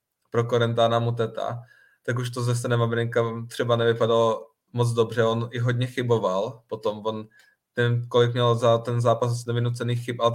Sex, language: male, Czech